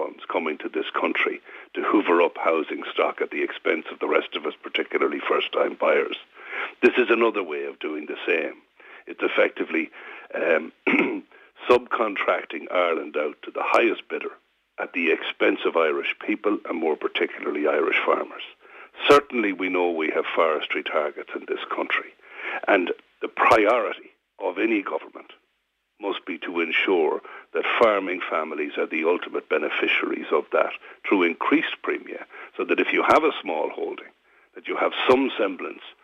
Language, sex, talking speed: English, male, 155 wpm